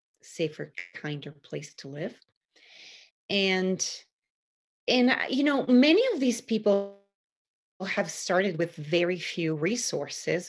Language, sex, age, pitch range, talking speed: English, female, 30-49, 155-210 Hz, 110 wpm